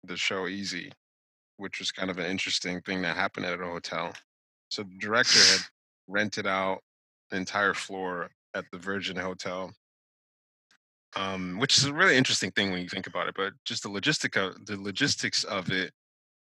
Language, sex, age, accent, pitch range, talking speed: English, male, 20-39, American, 90-105 Hz, 180 wpm